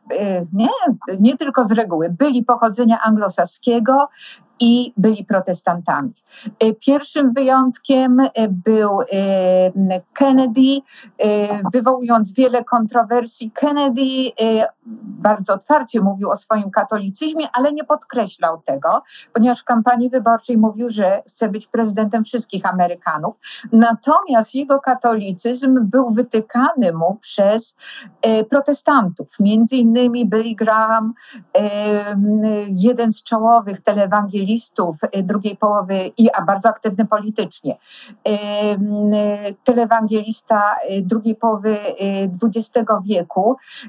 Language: Polish